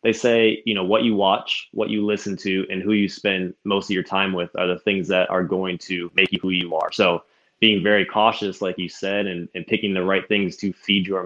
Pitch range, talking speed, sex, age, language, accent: 90-100 Hz, 255 wpm, male, 20-39, English, American